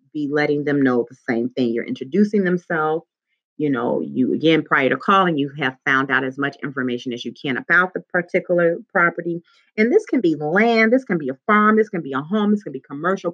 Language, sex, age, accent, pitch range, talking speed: English, female, 30-49, American, 150-220 Hz, 225 wpm